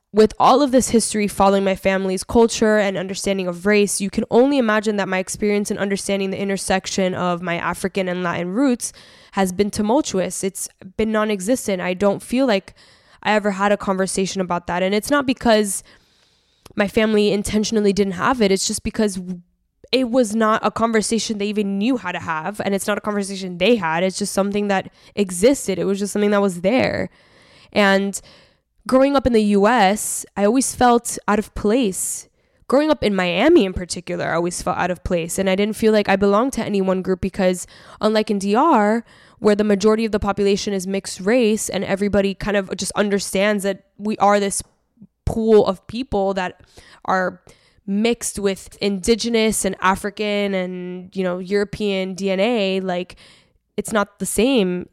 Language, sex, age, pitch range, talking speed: English, female, 10-29, 190-215 Hz, 185 wpm